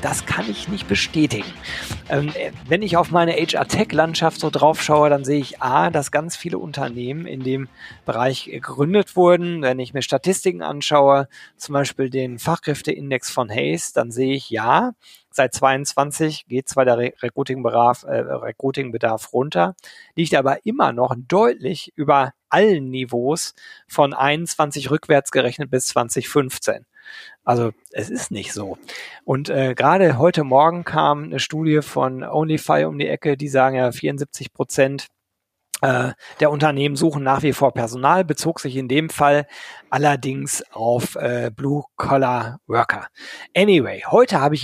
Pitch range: 130-155 Hz